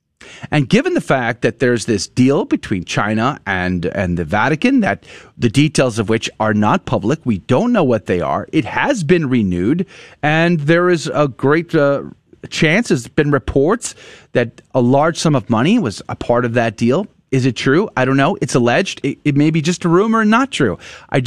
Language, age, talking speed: English, 30-49, 205 wpm